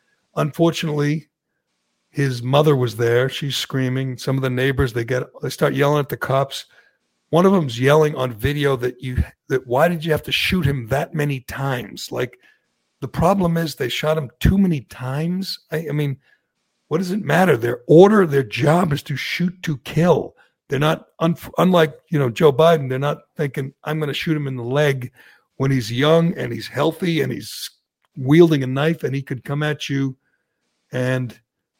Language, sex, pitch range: English, male, 130-160 Hz